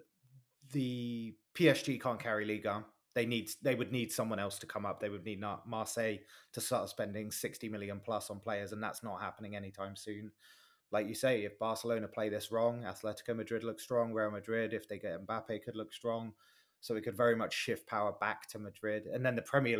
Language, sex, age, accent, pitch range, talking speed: English, male, 20-39, British, 105-120 Hz, 210 wpm